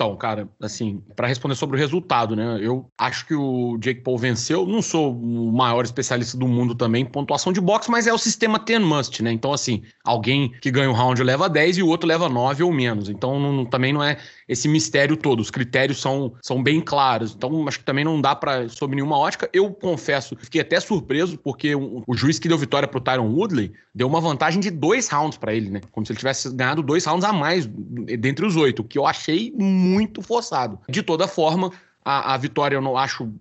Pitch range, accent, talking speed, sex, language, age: 125-160 Hz, Brazilian, 230 wpm, male, Portuguese, 30-49